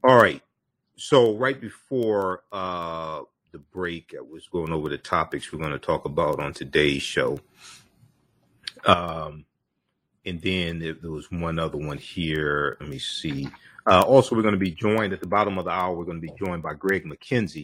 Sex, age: male, 40-59